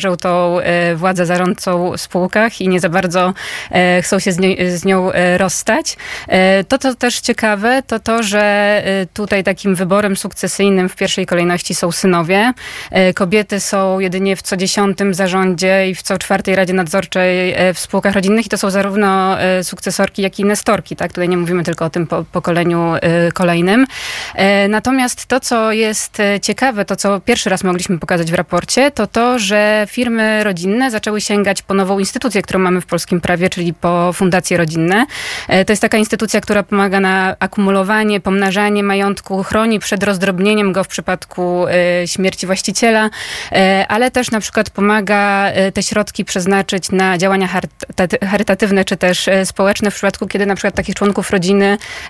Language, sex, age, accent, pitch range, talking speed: Polish, female, 20-39, native, 180-205 Hz, 160 wpm